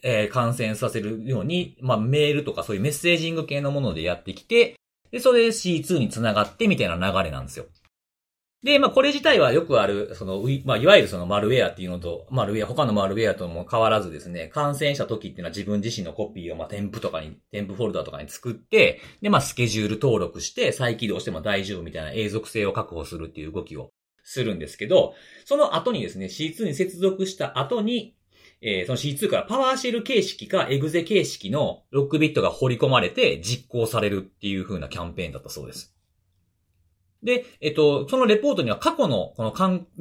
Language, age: Japanese, 40-59